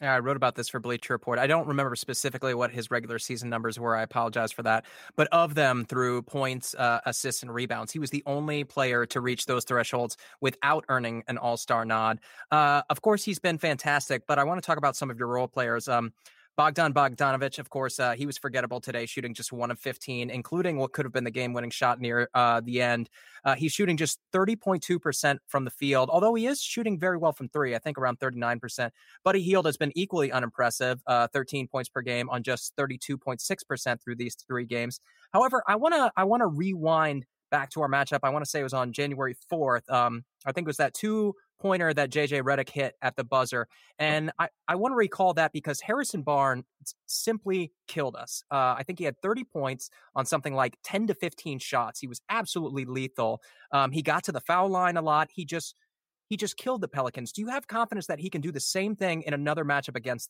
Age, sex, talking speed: 20-39, male, 235 wpm